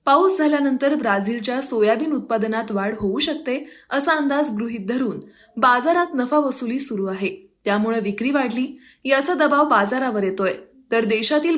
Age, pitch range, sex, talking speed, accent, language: 10-29, 210-285 Hz, female, 135 wpm, native, Marathi